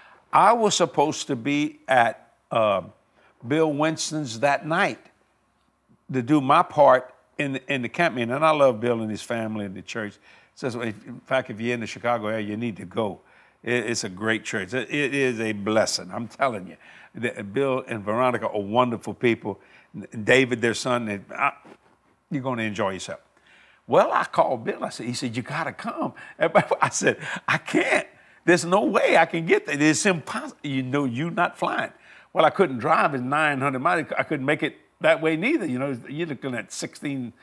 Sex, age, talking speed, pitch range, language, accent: male, 60-79, 195 wpm, 120-165 Hz, English, American